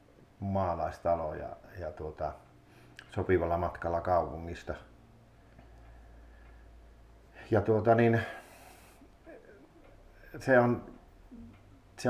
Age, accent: 50-69, native